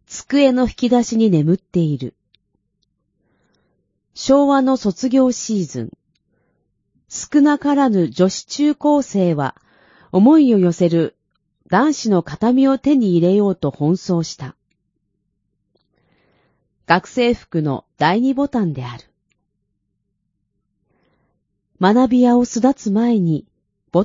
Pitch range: 170-255 Hz